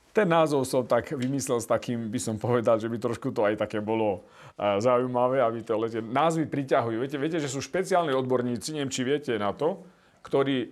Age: 40-59